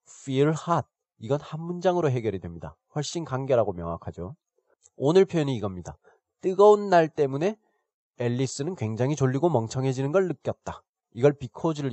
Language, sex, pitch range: Korean, male, 115-160 Hz